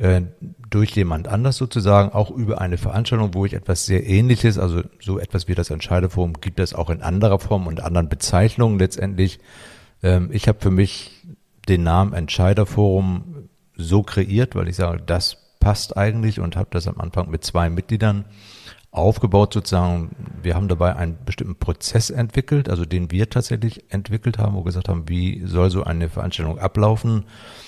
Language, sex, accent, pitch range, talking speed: German, male, German, 90-105 Hz, 165 wpm